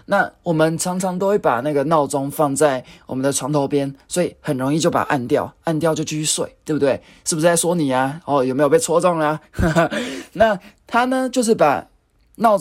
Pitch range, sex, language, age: 140-175 Hz, male, Chinese, 20-39